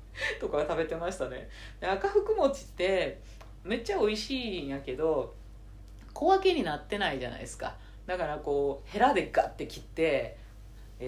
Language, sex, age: Japanese, female, 40-59